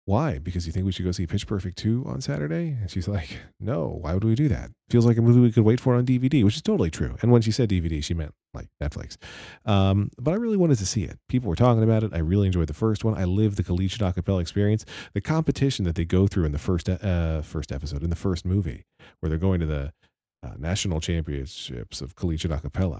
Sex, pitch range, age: male, 85-110 Hz, 40-59